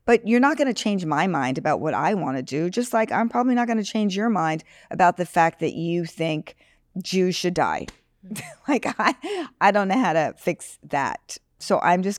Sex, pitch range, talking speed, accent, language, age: female, 155-210 Hz, 220 wpm, American, English, 50-69